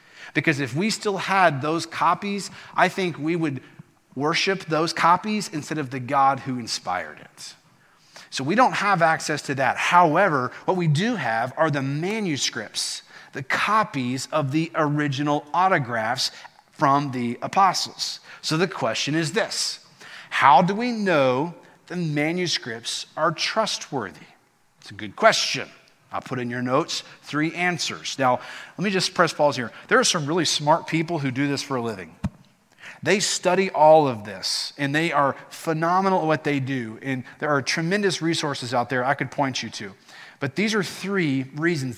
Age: 40-59